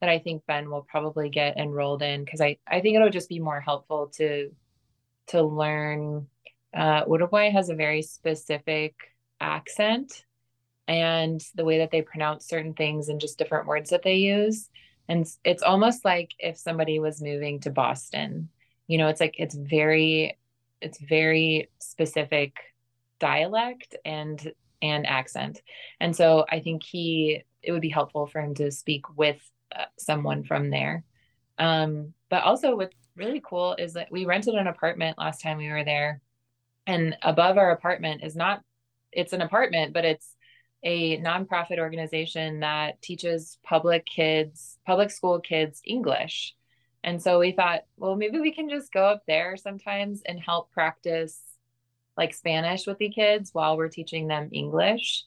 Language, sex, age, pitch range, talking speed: English, female, 20-39, 150-175 Hz, 160 wpm